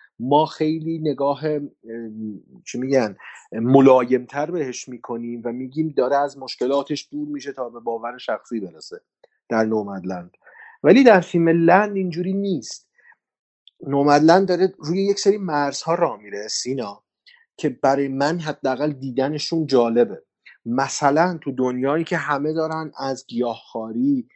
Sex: male